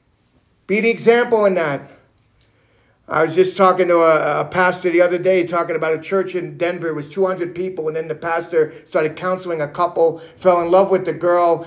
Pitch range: 180-250 Hz